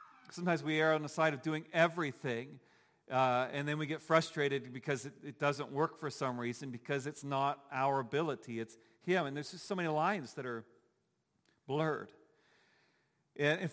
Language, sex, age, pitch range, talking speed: English, male, 40-59, 130-150 Hz, 175 wpm